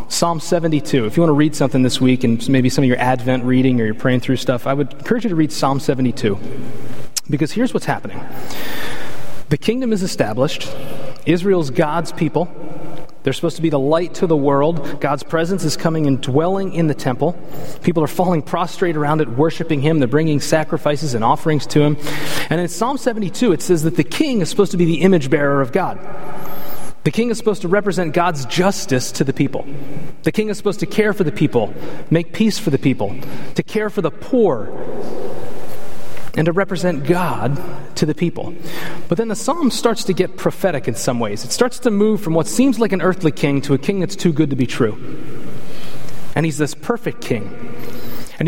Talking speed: 205 wpm